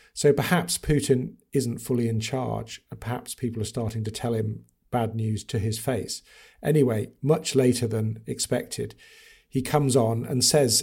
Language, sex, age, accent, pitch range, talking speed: English, male, 50-69, British, 115-140 Hz, 165 wpm